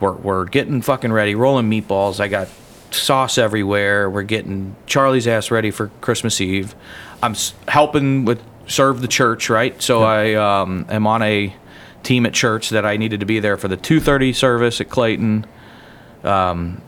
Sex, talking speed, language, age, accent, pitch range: male, 175 wpm, English, 40-59, American, 100-125 Hz